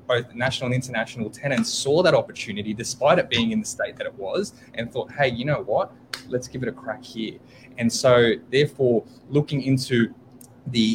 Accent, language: Australian, English